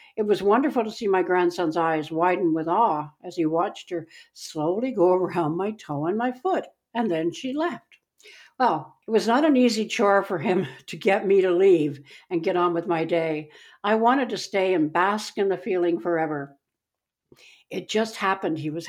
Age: 60-79